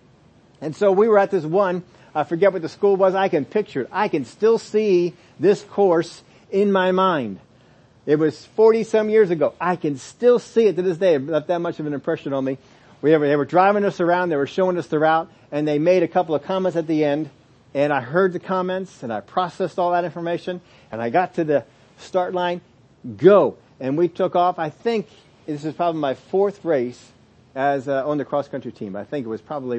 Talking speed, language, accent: 225 wpm, English, American